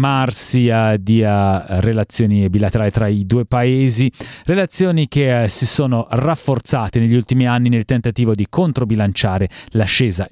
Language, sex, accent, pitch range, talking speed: Italian, male, native, 115-155 Hz, 115 wpm